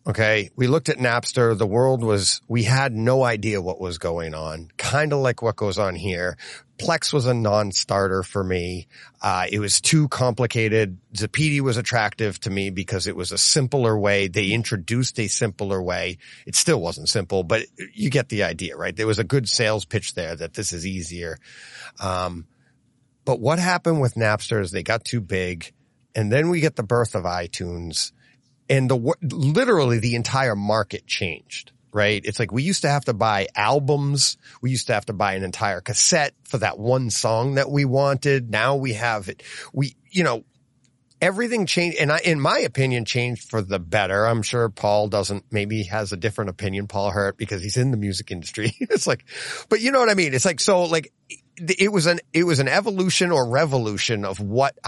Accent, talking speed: American, 200 wpm